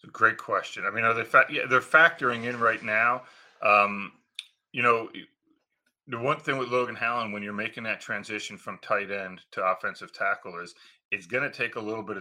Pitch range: 100-120 Hz